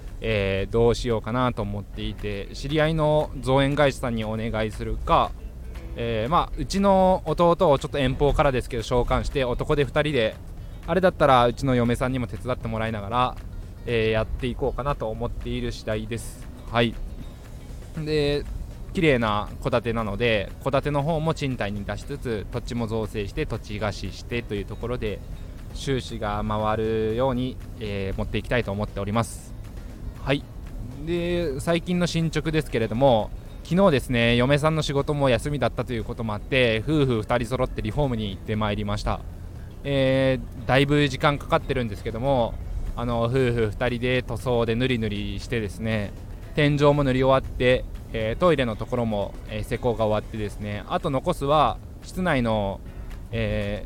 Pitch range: 105-135 Hz